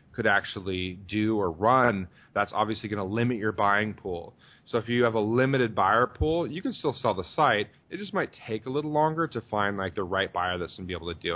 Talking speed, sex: 250 wpm, male